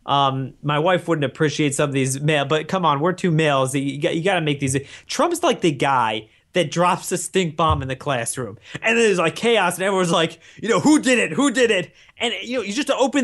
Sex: male